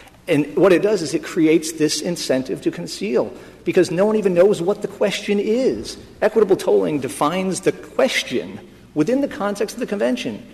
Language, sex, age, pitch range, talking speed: English, male, 50-69, 135-175 Hz, 175 wpm